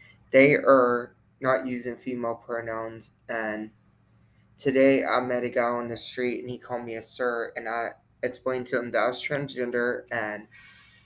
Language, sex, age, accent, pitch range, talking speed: English, male, 20-39, American, 110-125 Hz, 170 wpm